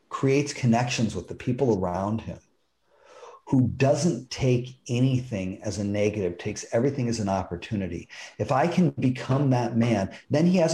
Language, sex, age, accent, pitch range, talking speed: English, male, 40-59, American, 110-140 Hz, 155 wpm